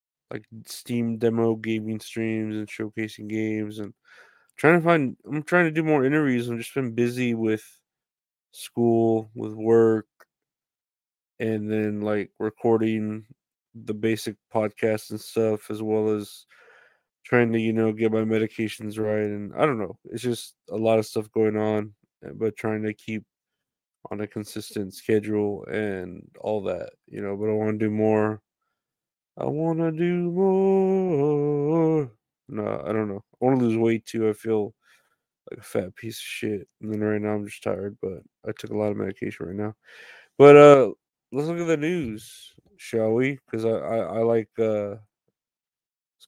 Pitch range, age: 105-120 Hz, 20-39